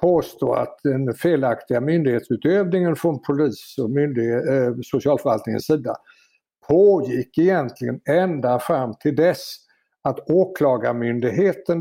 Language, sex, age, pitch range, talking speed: Swedish, male, 60-79, 130-165 Hz, 100 wpm